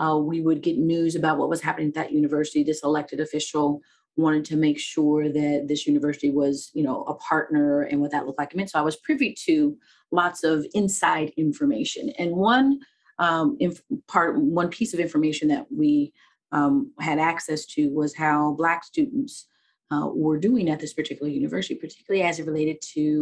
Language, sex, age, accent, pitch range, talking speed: English, female, 30-49, American, 150-185 Hz, 180 wpm